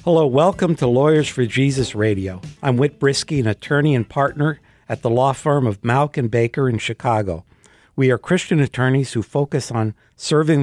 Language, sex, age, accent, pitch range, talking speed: English, male, 60-79, American, 120-145 Hz, 180 wpm